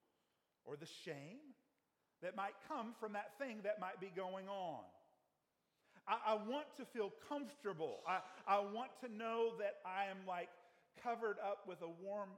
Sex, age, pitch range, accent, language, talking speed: male, 50-69, 185-245 Hz, American, English, 165 wpm